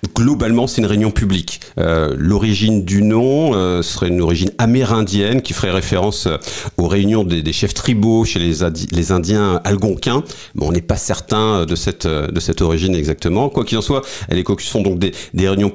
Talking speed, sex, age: 200 wpm, male, 40-59